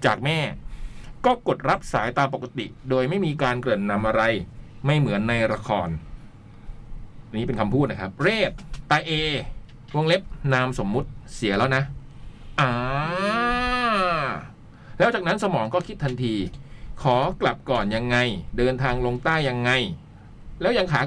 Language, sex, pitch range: Thai, male, 110-145 Hz